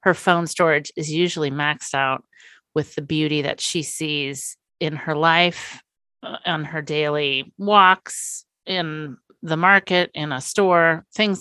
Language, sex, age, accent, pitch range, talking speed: English, female, 30-49, American, 145-175 Hz, 140 wpm